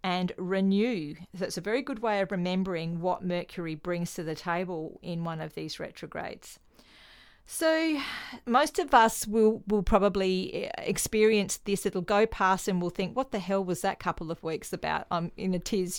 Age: 40-59